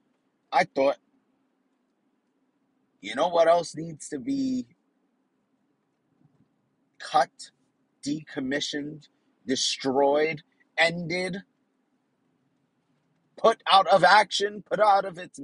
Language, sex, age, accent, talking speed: English, male, 30-49, American, 80 wpm